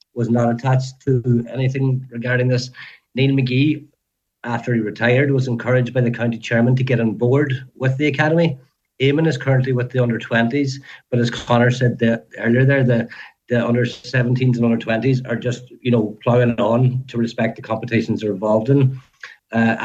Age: 50-69